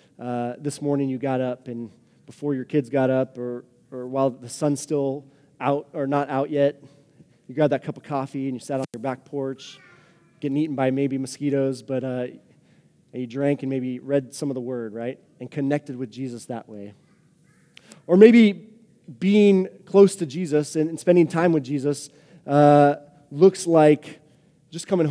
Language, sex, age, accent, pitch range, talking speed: English, male, 20-39, American, 130-165 Hz, 180 wpm